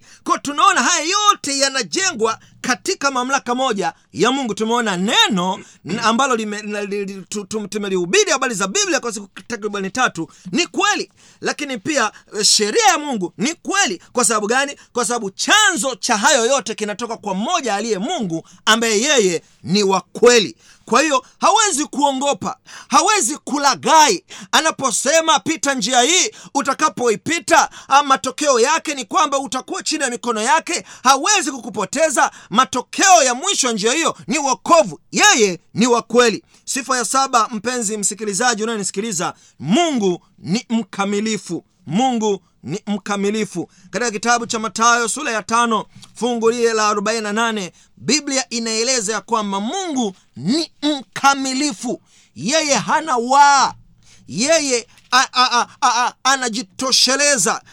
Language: Swahili